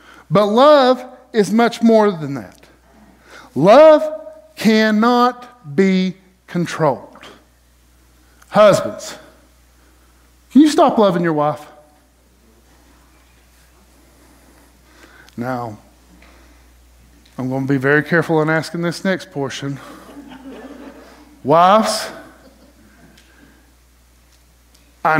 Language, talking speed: English, 75 wpm